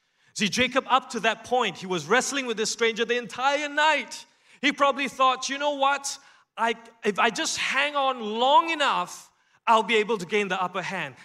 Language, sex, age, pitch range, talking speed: English, male, 30-49, 150-235 Hz, 195 wpm